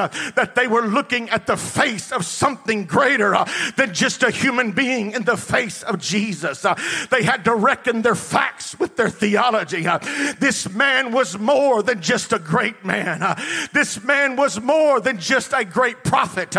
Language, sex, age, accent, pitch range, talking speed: English, male, 50-69, American, 245-315 Hz, 185 wpm